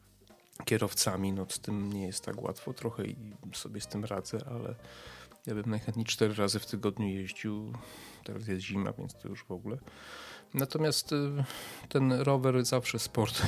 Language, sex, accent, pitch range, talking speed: Polish, male, native, 100-115 Hz, 155 wpm